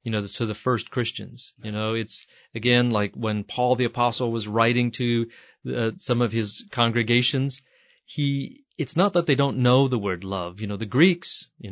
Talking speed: 195 wpm